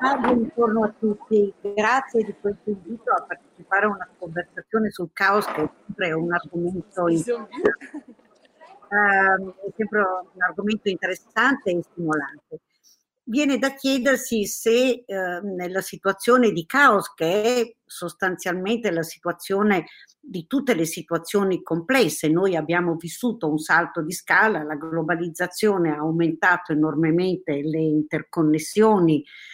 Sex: female